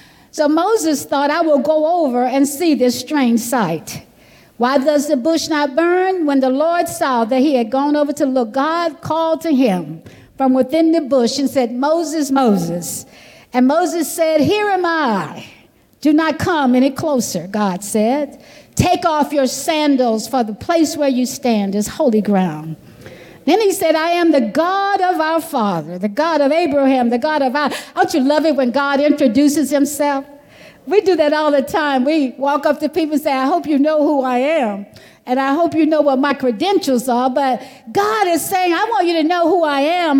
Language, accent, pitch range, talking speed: English, American, 260-325 Hz, 200 wpm